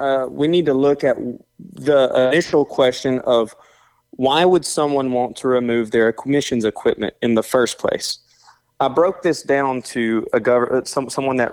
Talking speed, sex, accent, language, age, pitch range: 170 wpm, male, American, English, 30-49, 120-150 Hz